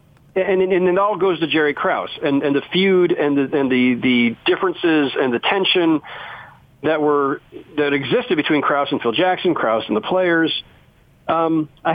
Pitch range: 125-165 Hz